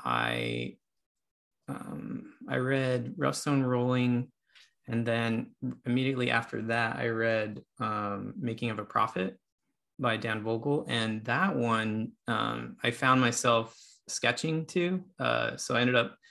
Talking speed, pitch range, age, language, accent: 135 wpm, 115-130 Hz, 20-39, English, American